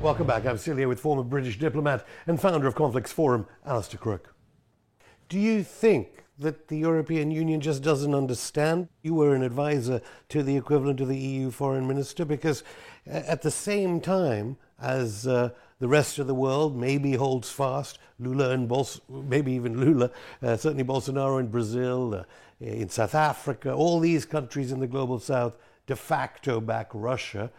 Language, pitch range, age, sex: English, 115-145 Hz, 60-79, male